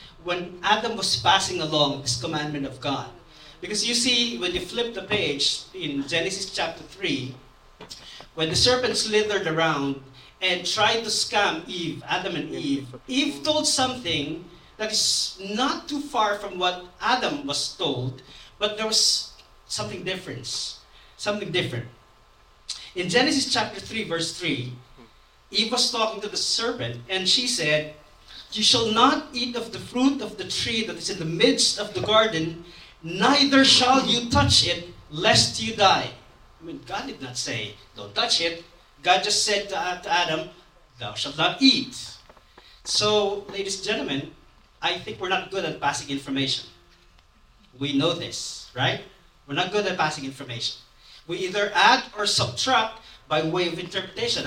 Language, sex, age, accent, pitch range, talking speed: English, male, 40-59, Filipino, 140-215 Hz, 160 wpm